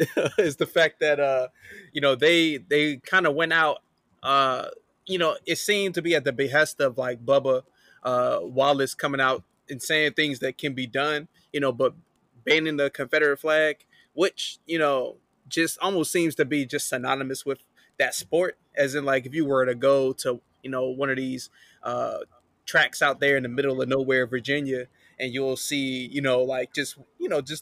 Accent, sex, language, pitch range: American, male, English, 135-165 Hz